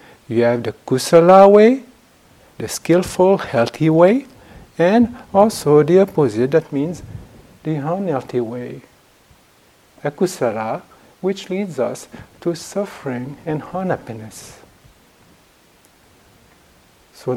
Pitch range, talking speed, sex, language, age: 130-185 Hz, 95 wpm, male, English, 60-79